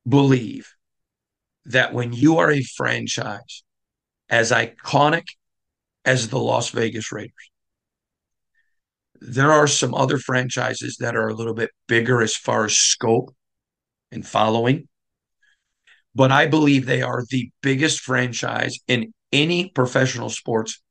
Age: 50-69